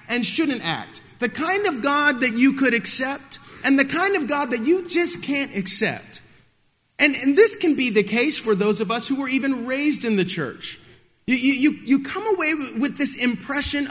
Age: 40-59